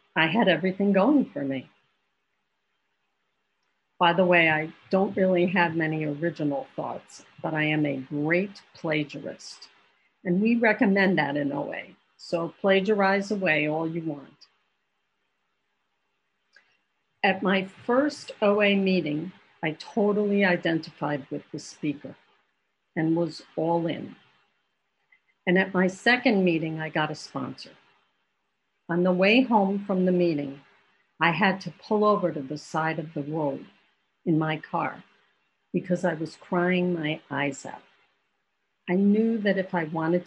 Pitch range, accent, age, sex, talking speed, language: 155-195 Hz, American, 50-69, female, 135 wpm, English